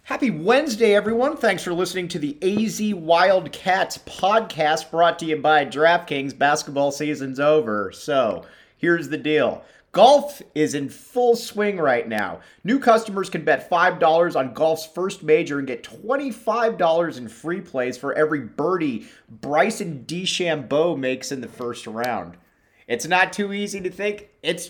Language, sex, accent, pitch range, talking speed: English, male, American, 135-205 Hz, 150 wpm